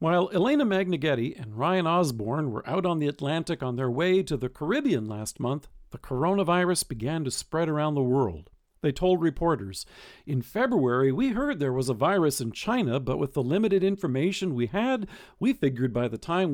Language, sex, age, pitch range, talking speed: English, male, 50-69, 135-185 Hz, 190 wpm